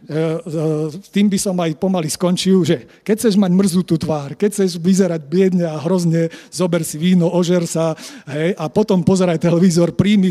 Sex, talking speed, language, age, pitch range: male, 175 wpm, Slovak, 40-59, 165-195 Hz